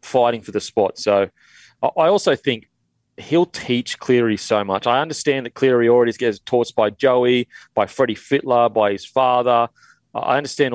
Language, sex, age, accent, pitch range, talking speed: English, male, 30-49, Australian, 110-135 Hz, 165 wpm